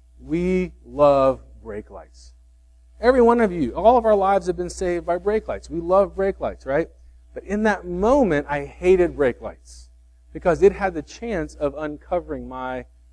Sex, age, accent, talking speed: male, 40-59, American, 180 wpm